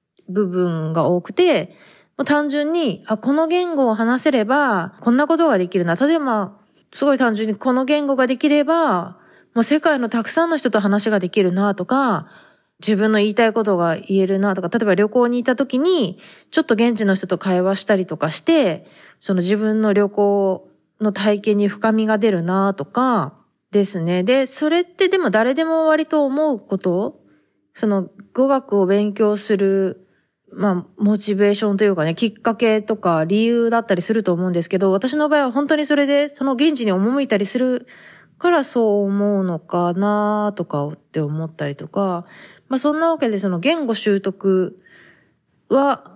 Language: Japanese